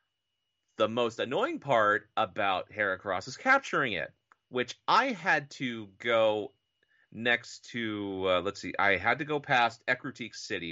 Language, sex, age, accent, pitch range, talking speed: English, male, 30-49, American, 105-135 Hz, 145 wpm